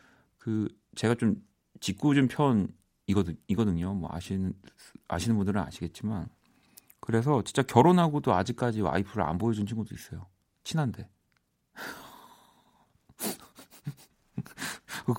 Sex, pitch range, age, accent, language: male, 95-125 Hz, 40-59, native, Korean